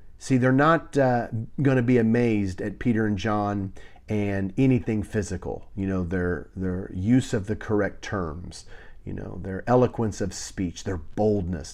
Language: English